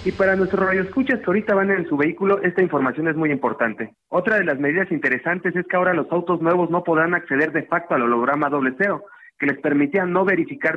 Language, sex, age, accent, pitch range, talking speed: Spanish, male, 40-59, Mexican, 155-195 Hz, 225 wpm